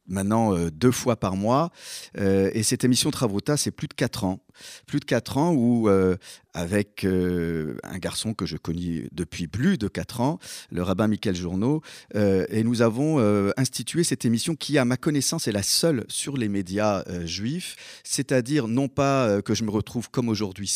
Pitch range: 100-130 Hz